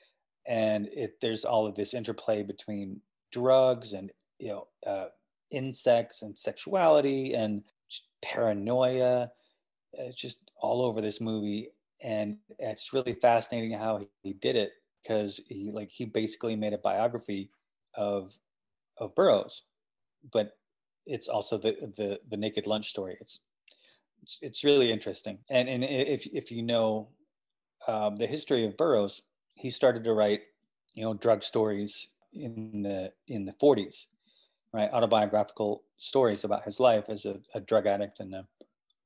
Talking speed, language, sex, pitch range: 145 wpm, English, male, 105-120 Hz